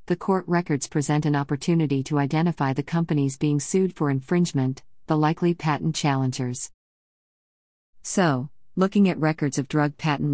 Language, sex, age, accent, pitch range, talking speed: English, female, 50-69, American, 135-165 Hz, 145 wpm